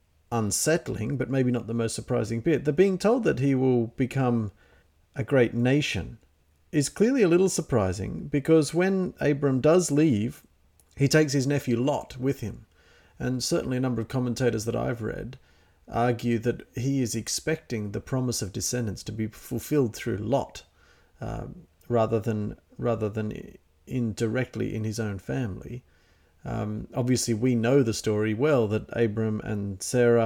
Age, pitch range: 40-59, 105-140 Hz